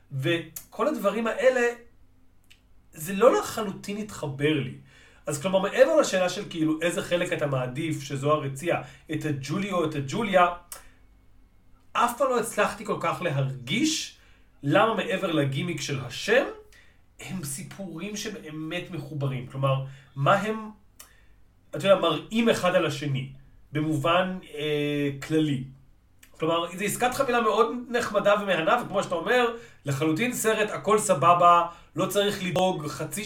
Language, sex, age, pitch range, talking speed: Hebrew, male, 40-59, 145-205 Hz, 130 wpm